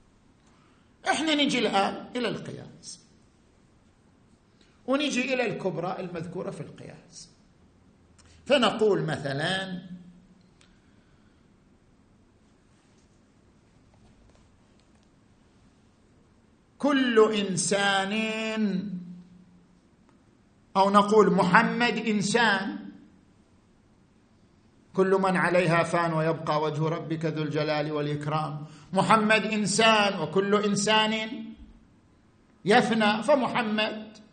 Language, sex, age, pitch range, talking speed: Arabic, male, 50-69, 175-220 Hz, 60 wpm